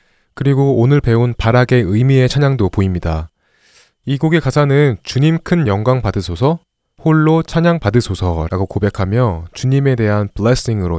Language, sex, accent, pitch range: Korean, male, native, 95-135 Hz